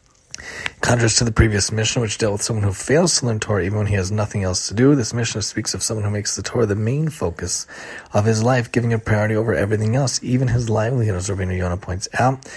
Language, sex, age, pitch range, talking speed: English, male, 30-49, 105-125 Hz, 245 wpm